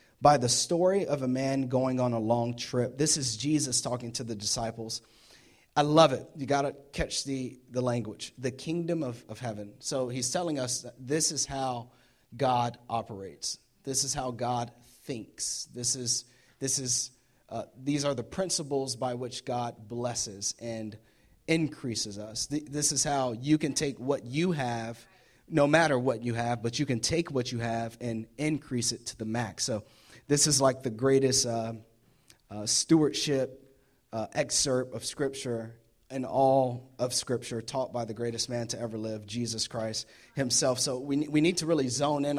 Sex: male